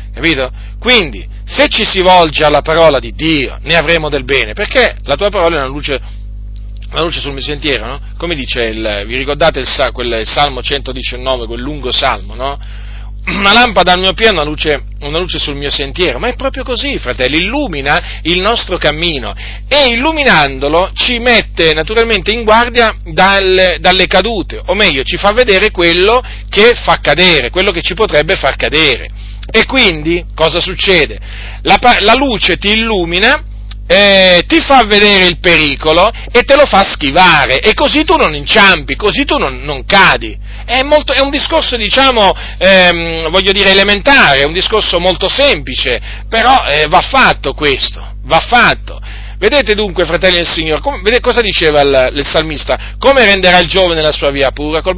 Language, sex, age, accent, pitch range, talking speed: Italian, male, 40-59, native, 135-210 Hz, 175 wpm